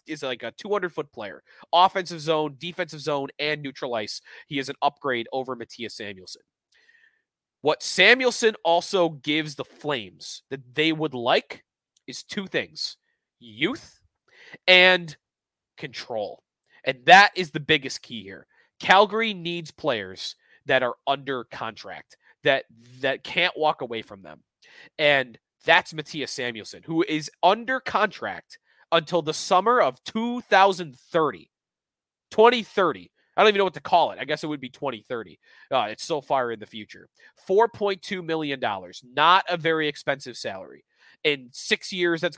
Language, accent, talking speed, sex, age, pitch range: English, American, 145 wpm, male, 30-49, 140-195 Hz